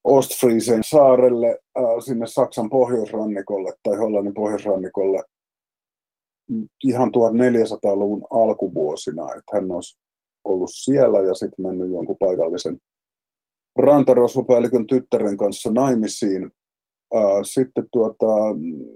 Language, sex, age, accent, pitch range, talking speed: Finnish, male, 30-49, native, 105-130 Hz, 80 wpm